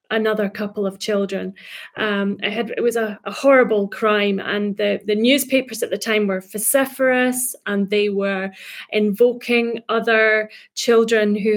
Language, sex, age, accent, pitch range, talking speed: English, female, 30-49, British, 205-240 Hz, 145 wpm